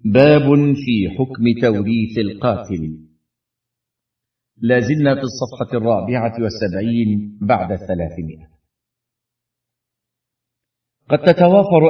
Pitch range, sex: 115-130 Hz, male